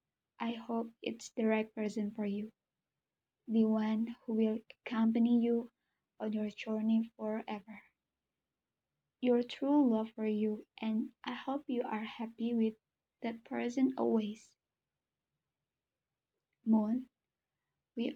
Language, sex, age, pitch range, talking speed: Indonesian, female, 20-39, 225-255 Hz, 115 wpm